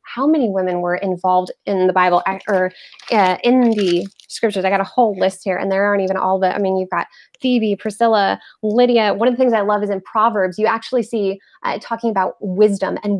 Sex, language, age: female, English, 20-39